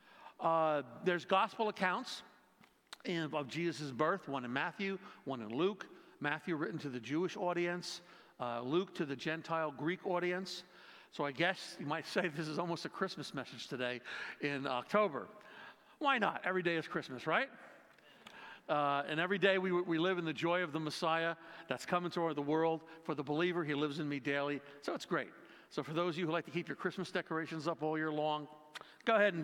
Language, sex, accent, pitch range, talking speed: English, male, American, 145-180 Hz, 200 wpm